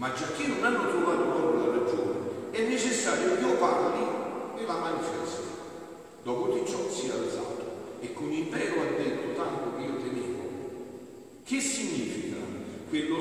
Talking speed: 155 wpm